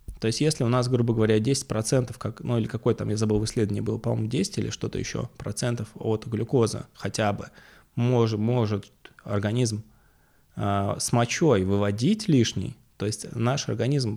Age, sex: 20-39, male